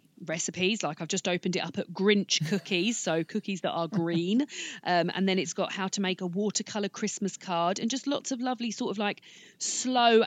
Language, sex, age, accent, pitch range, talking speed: English, female, 40-59, British, 175-220 Hz, 210 wpm